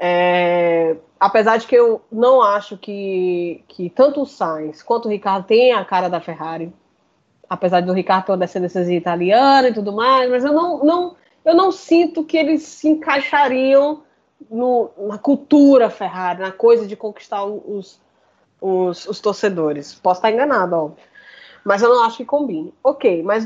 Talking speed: 165 wpm